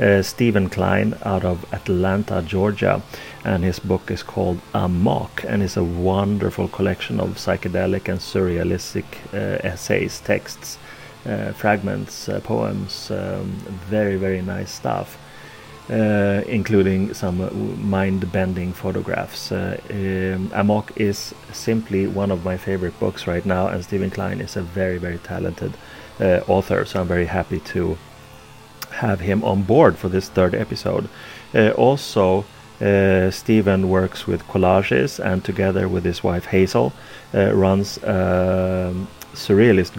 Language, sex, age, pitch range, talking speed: English, male, 30-49, 95-105 Hz, 135 wpm